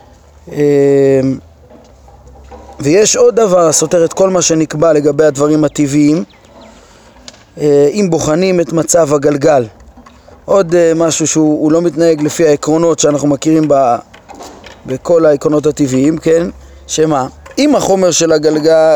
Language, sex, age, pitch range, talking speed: Hebrew, male, 20-39, 155-190 Hz, 110 wpm